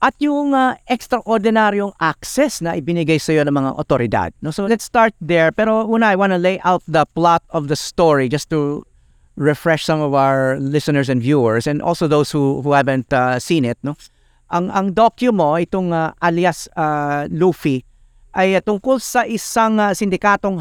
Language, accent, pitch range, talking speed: English, Filipino, 150-195 Hz, 185 wpm